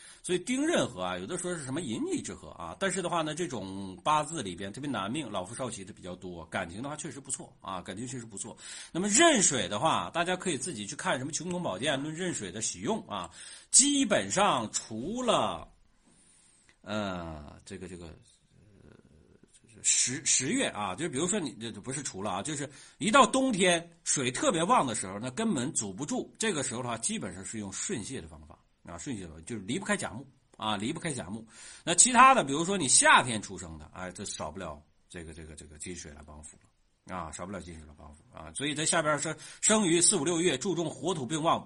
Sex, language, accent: male, Chinese, native